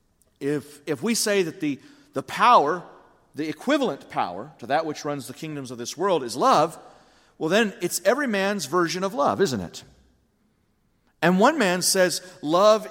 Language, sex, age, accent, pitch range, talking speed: English, male, 40-59, American, 155-220 Hz, 170 wpm